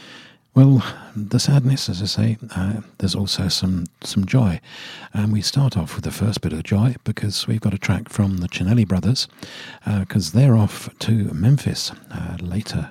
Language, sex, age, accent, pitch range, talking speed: English, male, 50-69, British, 90-110 Hz, 180 wpm